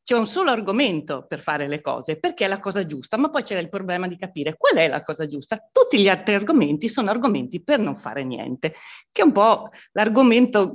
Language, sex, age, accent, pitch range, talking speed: Italian, female, 40-59, native, 170-230 Hz, 225 wpm